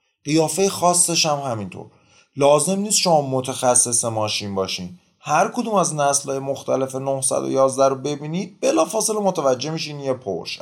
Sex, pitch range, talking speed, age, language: male, 105-160 Hz, 135 wpm, 30-49, Persian